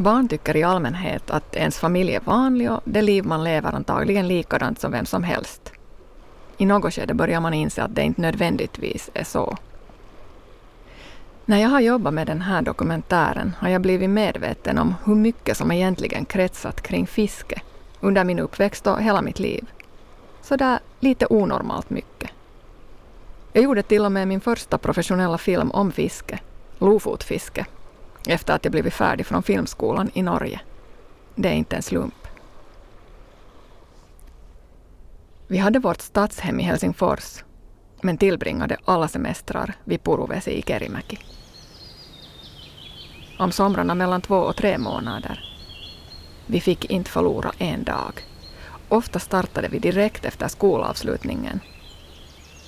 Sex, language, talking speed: female, Swedish, 140 wpm